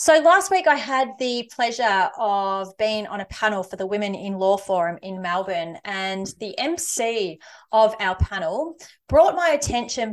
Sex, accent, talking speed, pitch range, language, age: female, Australian, 170 wpm, 195-265 Hz, English, 30-49